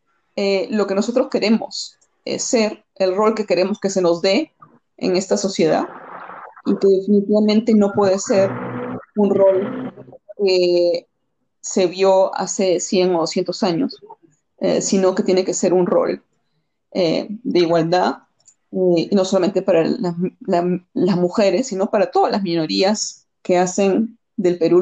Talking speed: 150 wpm